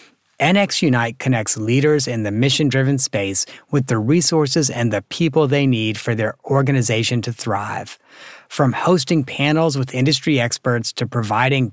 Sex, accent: male, American